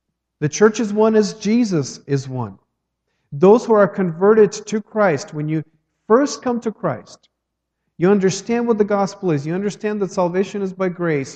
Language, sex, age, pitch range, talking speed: English, male, 50-69, 145-205 Hz, 175 wpm